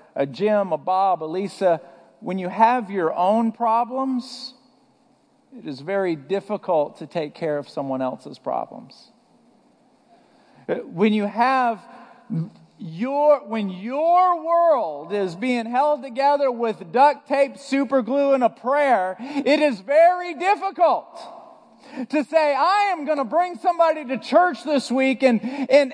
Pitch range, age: 195-275 Hz, 50-69